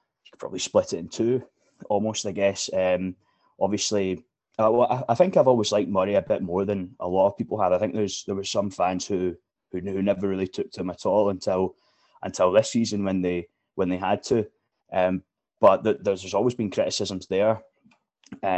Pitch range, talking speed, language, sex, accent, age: 95-100 Hz, 215 wpm, English, male, British, 20-39